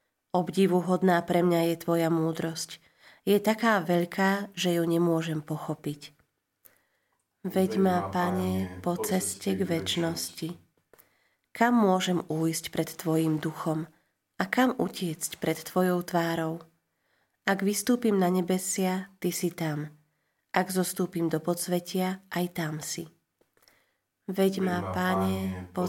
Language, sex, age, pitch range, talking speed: Slovak, female, 30-49, 165-190 Hz, 115 wpm